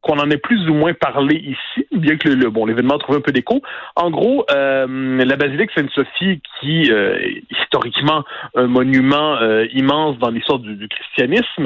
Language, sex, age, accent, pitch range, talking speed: French, male, 30-49, French, 130-165 Hz, 195 wpm